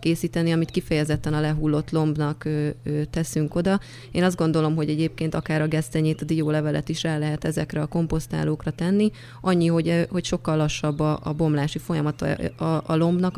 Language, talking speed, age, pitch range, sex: Hungarian, 175 wpm, 20-39, 150-170 Hz, female